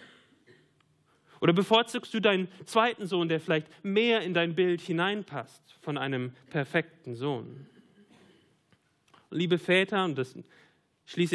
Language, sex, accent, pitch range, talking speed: German, male, German, 155-200 Hz, 115 wpm